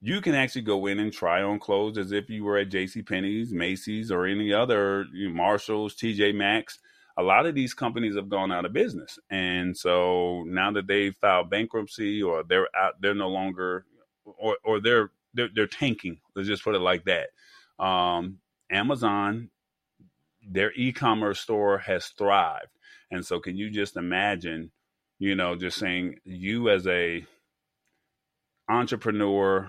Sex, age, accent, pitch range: male, 30-49, American, 95-105 Hz